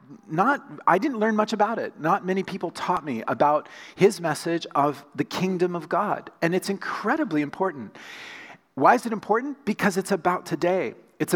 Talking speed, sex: 175 wpm, male